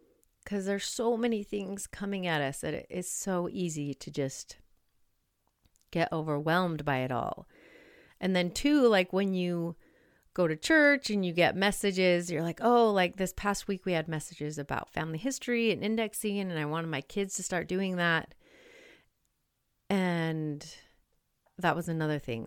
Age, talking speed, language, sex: 30-49, 165 wpm, English, female